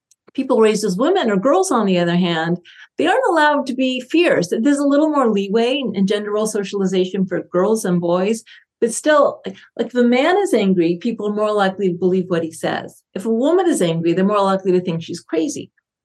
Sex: female